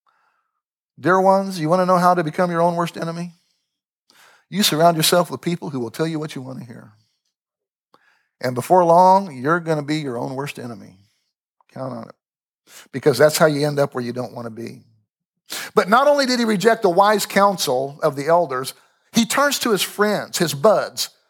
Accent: American